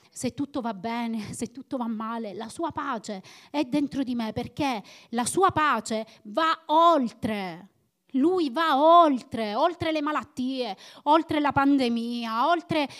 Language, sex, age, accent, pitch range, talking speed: Italian, female, 30-49, native, 220-305 Hz, 145 wpm